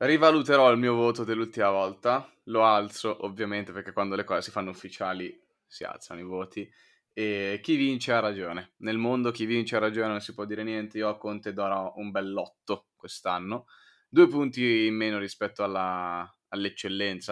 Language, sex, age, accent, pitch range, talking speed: Italian, male, 20-39, native, 95-110 Hz, 175 wpm